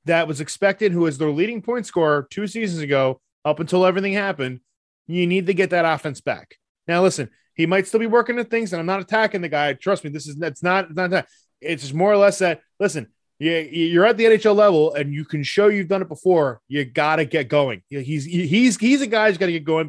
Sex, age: male, 20-39